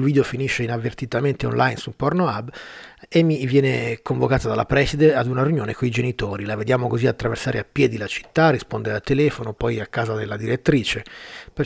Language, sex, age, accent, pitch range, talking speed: Italian, male, 30-49, native, 115-150 Hz, 180 wpm